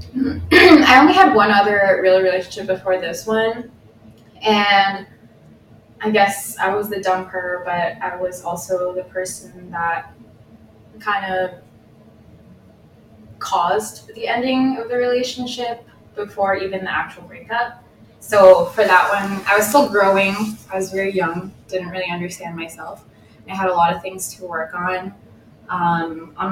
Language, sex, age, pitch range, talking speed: English, female, 10-29, 175-205 Hz, 145 wpm